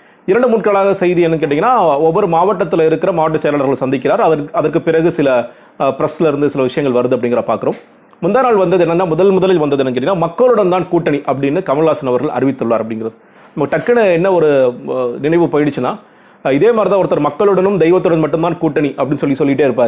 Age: 30-49